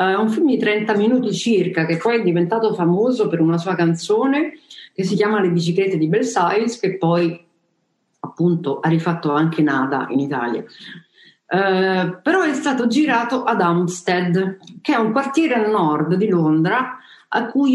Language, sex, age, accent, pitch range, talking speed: Italian, female, 50-69, native, 165-230 Hz, 170 wpm